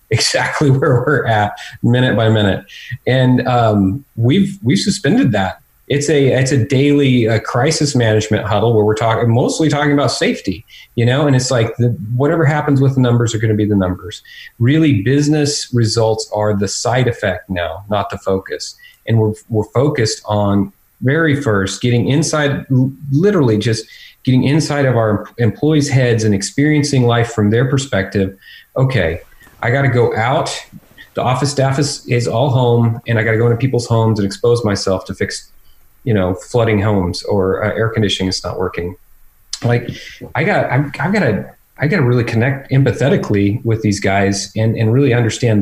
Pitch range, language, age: 105-140 Hz, English, 40-59